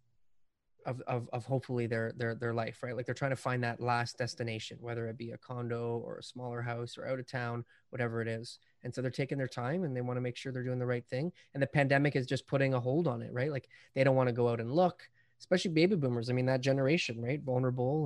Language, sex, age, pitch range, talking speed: English, male, 20-39, 120-135 Hz, 265 wpm